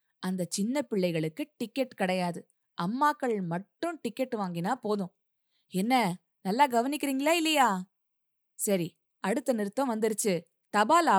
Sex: female